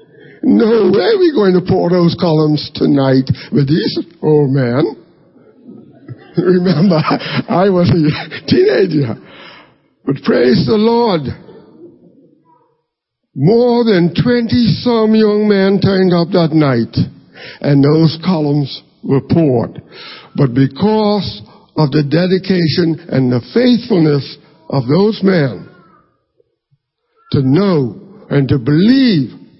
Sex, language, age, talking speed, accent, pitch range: male, English, 60-79, 105 wpm, American, 145-195 Hz